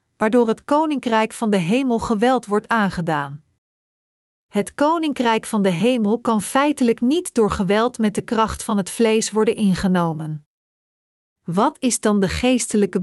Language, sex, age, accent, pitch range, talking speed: Dutch, female, 40-59, Dutch, 200-250 Hz, 145 wpm